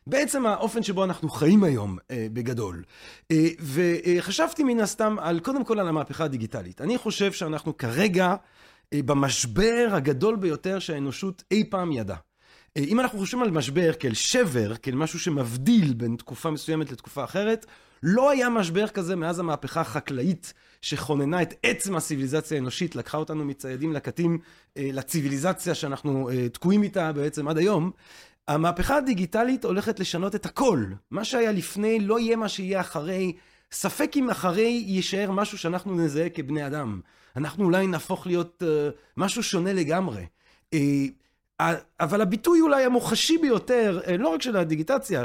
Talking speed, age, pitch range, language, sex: 150 wpm, 30-49, 155-205 Hz, Hebrew, male